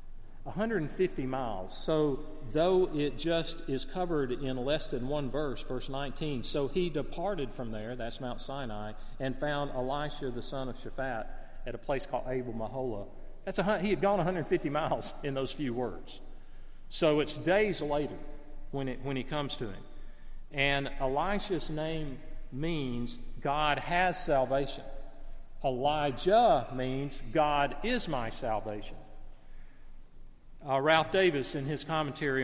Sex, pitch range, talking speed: male, 130-165 Hz, 145 wpm